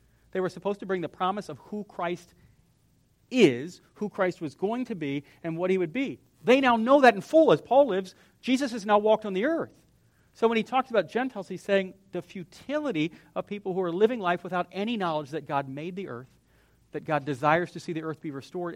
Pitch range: 150-205 Hz